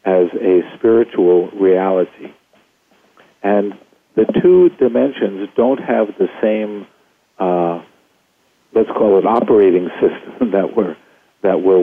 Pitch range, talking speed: 90-110 Hz, 105 wpm